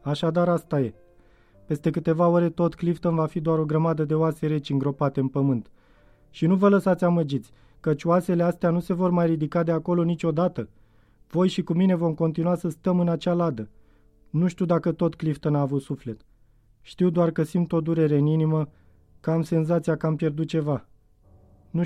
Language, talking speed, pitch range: Romanian, 190 wpm, 140-175 Hz